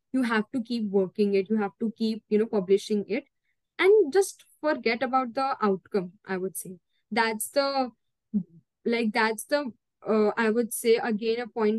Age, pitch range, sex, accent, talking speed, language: 10-29, 205-255 Hz, female, Indian, 180 wpm, English